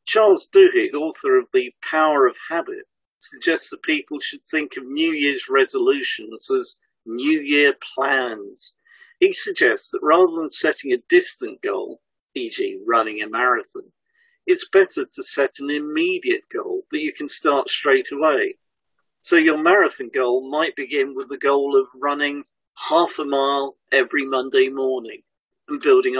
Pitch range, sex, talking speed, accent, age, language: 315-400 Hz, male, 150 wpm, British, 50-69, English